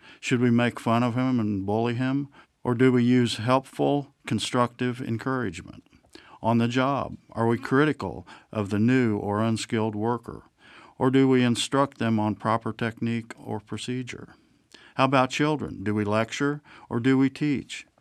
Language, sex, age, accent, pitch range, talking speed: English, male, 50-69, American, 105-130 Hz, 160 wpm